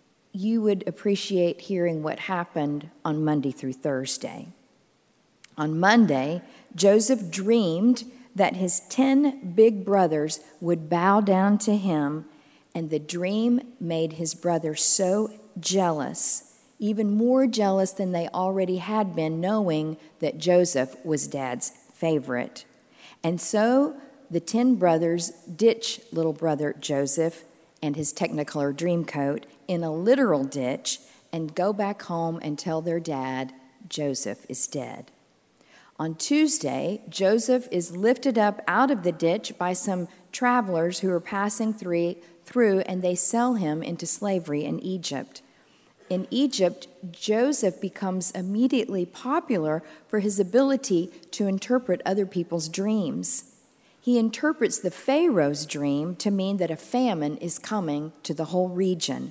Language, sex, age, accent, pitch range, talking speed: English, female, 50-69, American, 160-215 Hz, 130 wpm